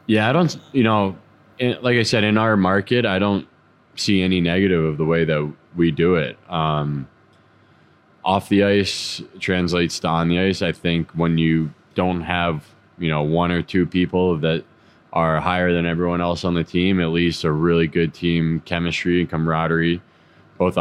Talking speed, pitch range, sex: 180 wpm, 80-90 Hz, male